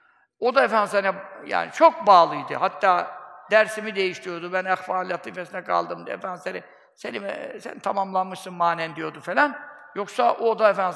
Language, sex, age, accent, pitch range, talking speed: Turkish, male, 60-79, native, 185-230 Hz, 140 wpm